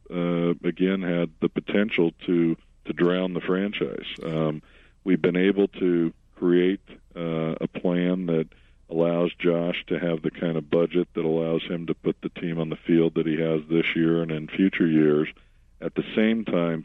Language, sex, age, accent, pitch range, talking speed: English, male, 50-69, American, 80-90 Hz, 180 wpm